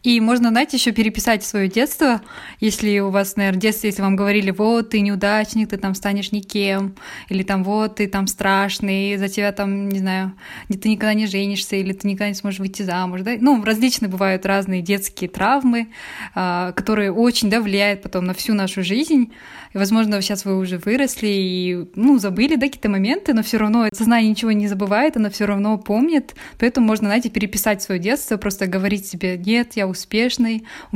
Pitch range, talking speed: 195-230 Hz, 190 wpm